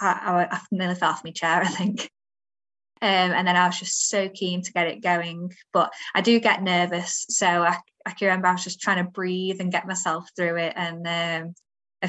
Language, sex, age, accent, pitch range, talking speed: English, female, 20-39, British, 175-200 Hz, 225 wpm